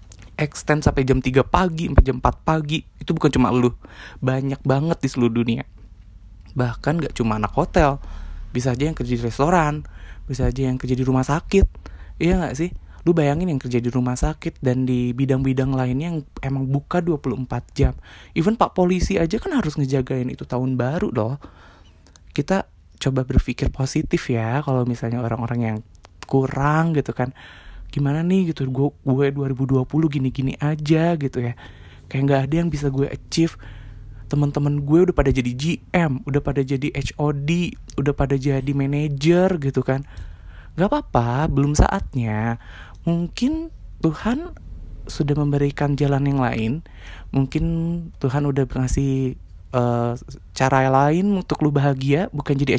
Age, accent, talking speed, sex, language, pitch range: 20-39, native, 150 wpm, male, Indonesian, 120-150 Hz